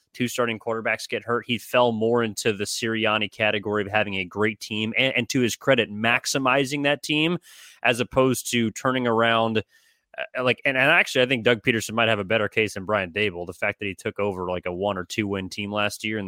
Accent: American